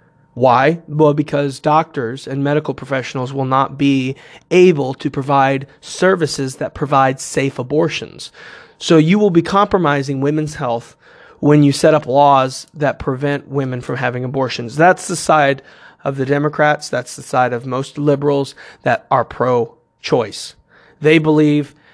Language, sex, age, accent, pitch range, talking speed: English, male, 30-49, American, 135-160 Hz, 145 wpm